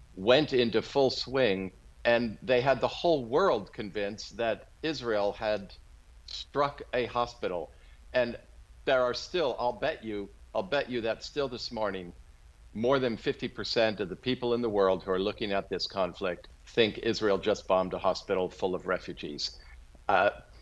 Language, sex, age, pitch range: English, male, 50-69, 90-125 Hz